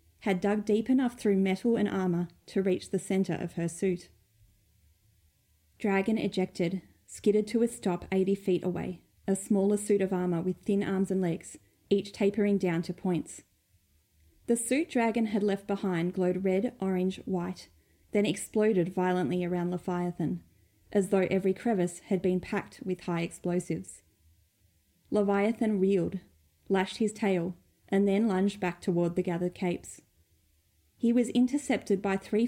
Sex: female